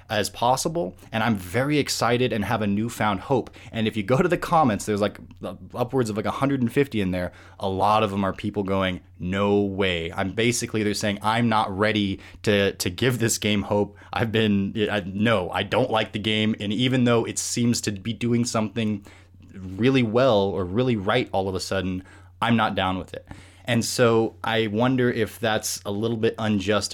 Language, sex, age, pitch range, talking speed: English, male, 20-39, 95-115 Hz, 200 wpm